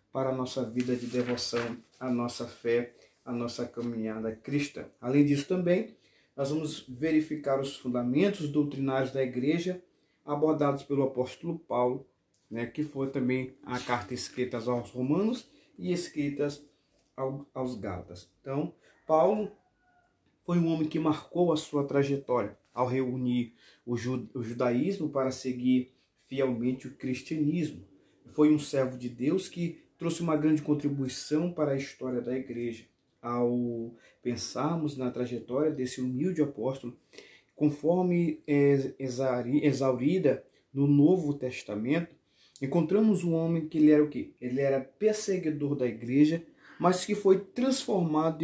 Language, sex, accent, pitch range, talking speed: Portuguese, male, Brazilian, 125-160 Hz, 130 wpm